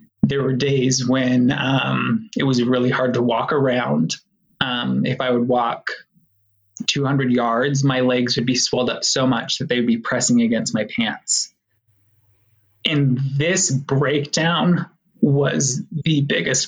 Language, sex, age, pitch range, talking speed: English, male, 20-39, 125-150 Hz, 145 wpm